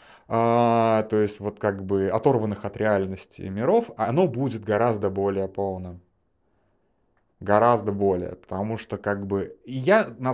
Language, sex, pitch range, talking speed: Russian, male, 95-120 Hz, 130 wpm